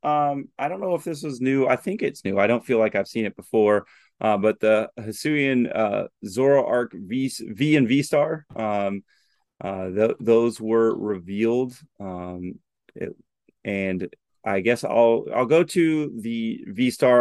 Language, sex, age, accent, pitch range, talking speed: English, male, 30-49, American, 105-140 Hz, 170 wpm